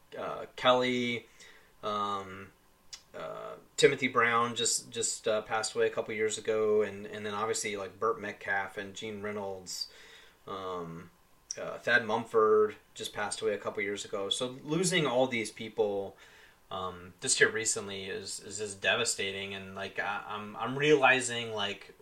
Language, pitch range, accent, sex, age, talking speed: English, 100-135 Hz, American, male, 30-49, 155 wpm